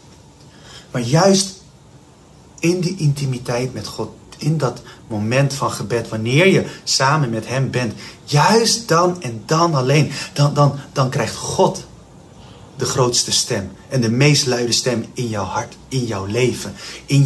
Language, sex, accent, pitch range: Dutch, male, Dutch, 110-150 Hz